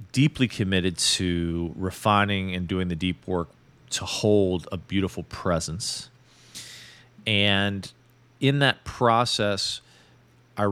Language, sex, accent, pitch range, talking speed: English, male, American, 90-110 Hz, 105 wpm